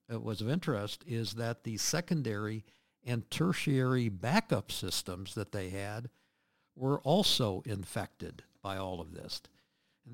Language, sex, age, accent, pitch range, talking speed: English, male, 60-79, American, 105-130 Hz, 135 wpm